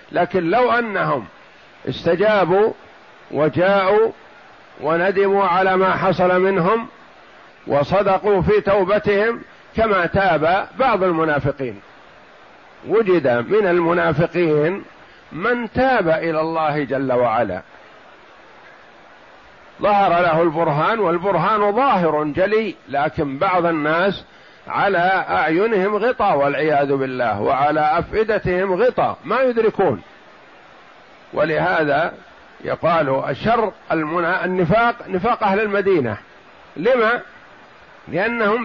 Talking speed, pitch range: 85 wpm, 160-220 Hz